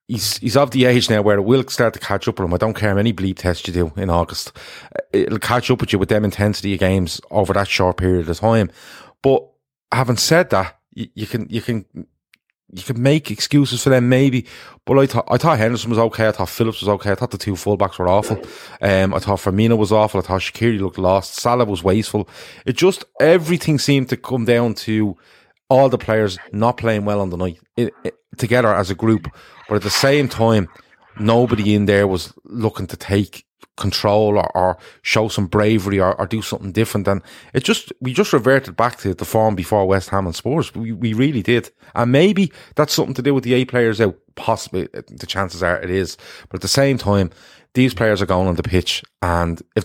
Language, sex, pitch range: English, male, 95-120 Hz